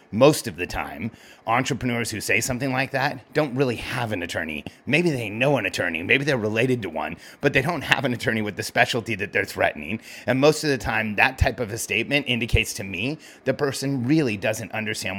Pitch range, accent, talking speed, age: 110-140 Hz, American, 215 wpm, 30-49